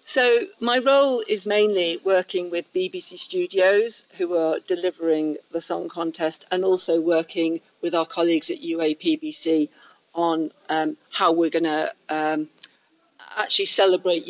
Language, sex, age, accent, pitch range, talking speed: English, female, 50-69, British, 160-190 Hz, 130 wpm